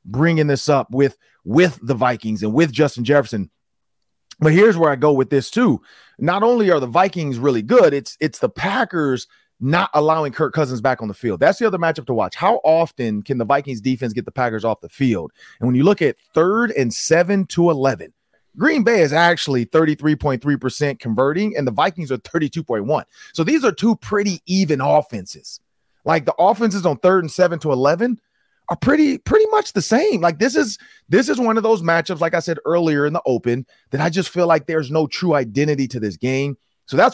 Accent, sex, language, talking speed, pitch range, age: American, male, English, 210 wpm, 125-175 Hz, 30-49